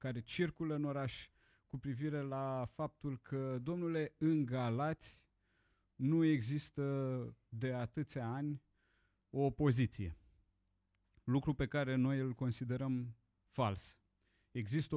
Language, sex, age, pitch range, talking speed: Romanian, male, 30-49, 115-150 Hz, 110 wpm